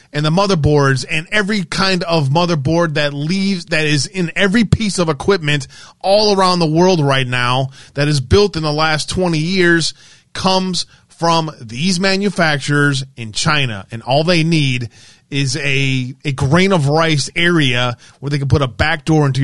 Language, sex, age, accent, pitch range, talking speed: English, male, 30-49, American, 135-170 Hz, 175 wpm